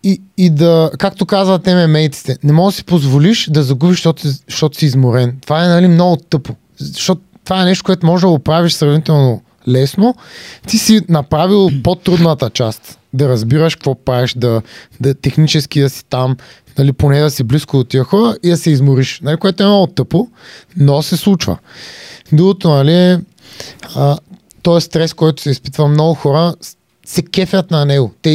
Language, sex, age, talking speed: Bulgarian, male, 30-49, 170 wpm